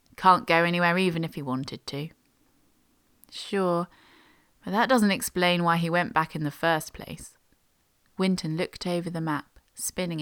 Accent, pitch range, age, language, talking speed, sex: British, 145-175 Hz, 30-49, English, 160 wpm, female